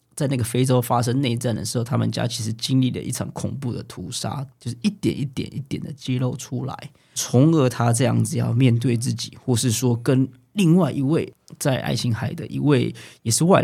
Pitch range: 120-155 Hz